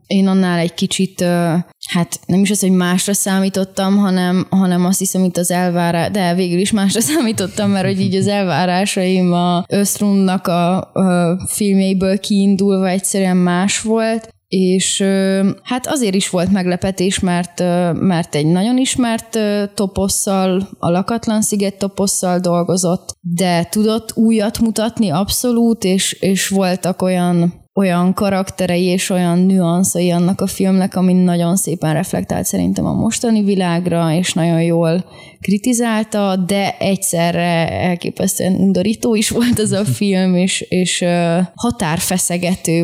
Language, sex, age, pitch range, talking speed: Hungarian, female, 20-39, 175-200 Hz, 130 wpm